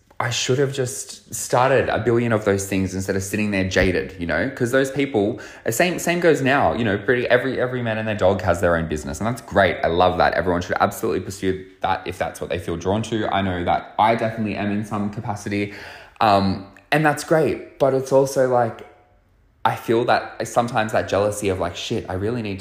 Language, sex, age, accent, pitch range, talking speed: English, male, 20-39, Australian, 95-115 Hz, 225 wpm